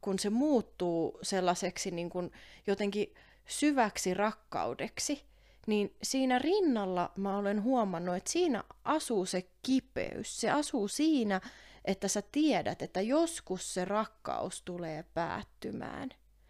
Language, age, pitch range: Finnish, 30-49, 180-245 Hz